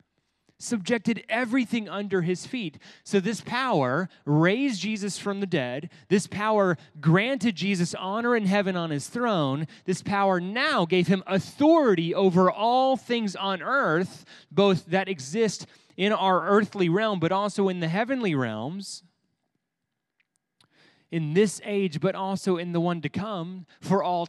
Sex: male